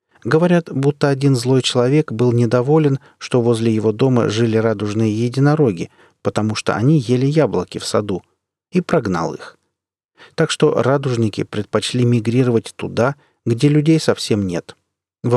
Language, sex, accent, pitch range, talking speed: Russian, male, native, 105-145 Hz, 135 wpm